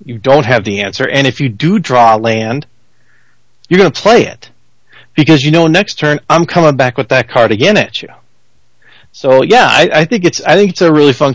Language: English